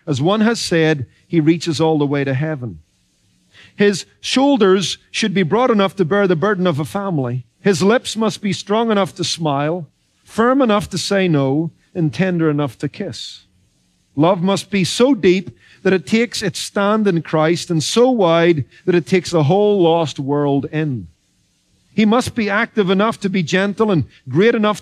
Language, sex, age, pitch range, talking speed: English, male, 40-59, 155-205 Hz, 185 wpm